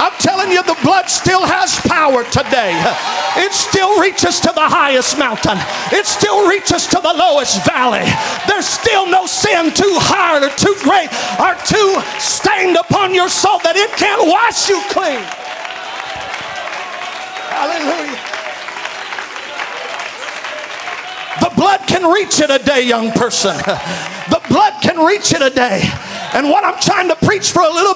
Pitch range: 330-390 Hz